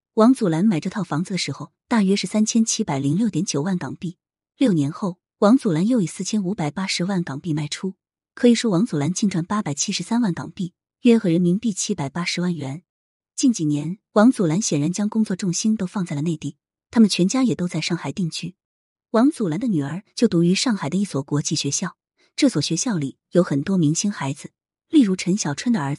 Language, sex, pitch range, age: Chinese, female, 155-215 Hz, 20-39